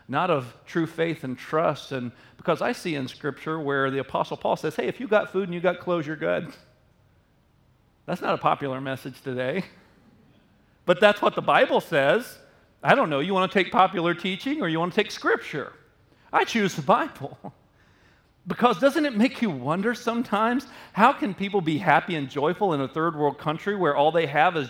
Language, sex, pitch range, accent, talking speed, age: English, male, 165-270 Hz, American, 200 wpm, 40-59